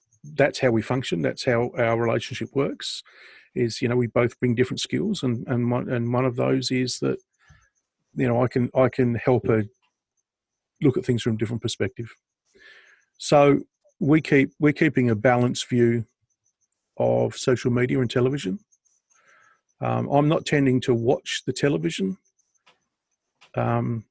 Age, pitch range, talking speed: 40-59, 115-130 Hz, 155 wpm